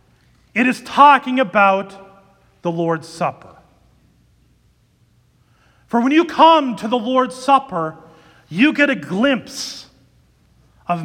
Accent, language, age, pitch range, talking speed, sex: American, English, 40-59, 195-280 Hz, 110 wpm, male